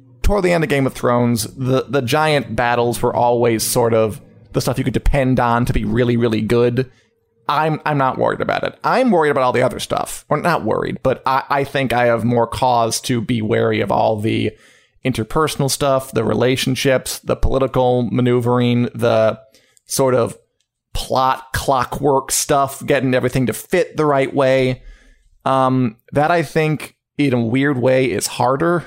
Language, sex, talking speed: English, male, 180 wpm